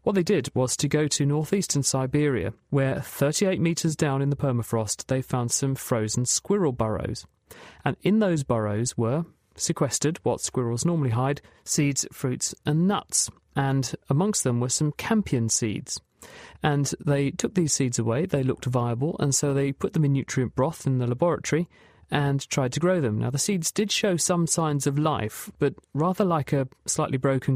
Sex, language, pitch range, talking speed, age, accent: male, English, 125-165 Hz, 180 wpm, 40-59, British